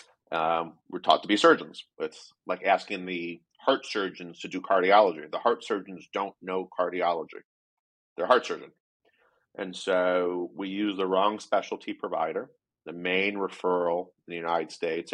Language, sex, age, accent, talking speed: English, male, 40-59, American, 160 wpm